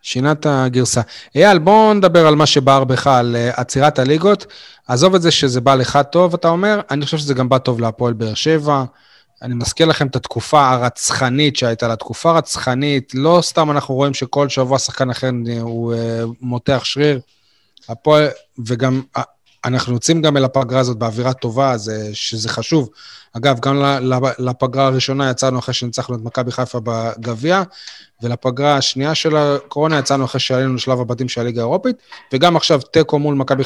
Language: Hebrew